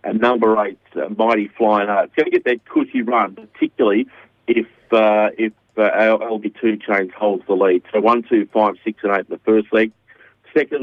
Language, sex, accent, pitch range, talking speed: English, male, Australian, 110-120 Hz, 205 wpm